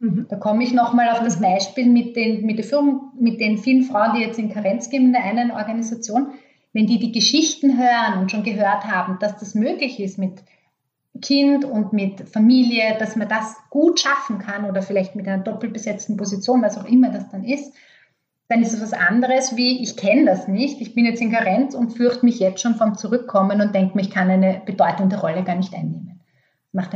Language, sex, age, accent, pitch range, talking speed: German, female, 30-49, Austrian, 195-240 Hz, 210 wpm